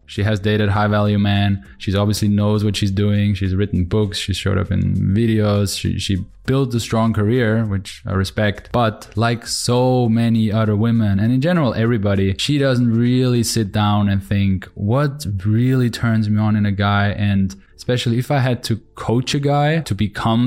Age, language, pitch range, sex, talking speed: 20-39, English, 105-120 Hz, male, 190 wpm